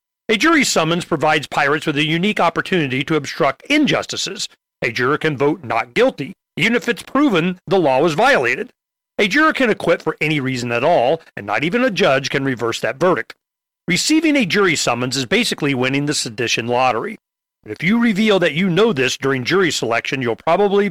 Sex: male